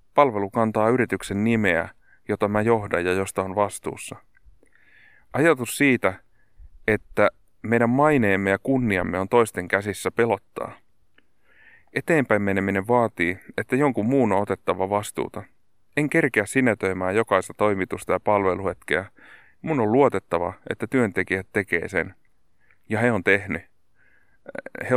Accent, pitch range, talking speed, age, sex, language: native, 95-115 Hz, 120 wpm, 30-49, male, Finnish